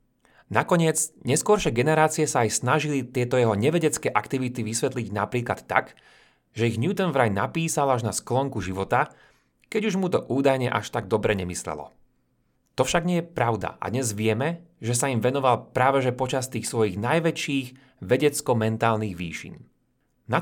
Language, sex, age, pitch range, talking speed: Slovak, male, 30-49, 110-150 Hz, 150 wpm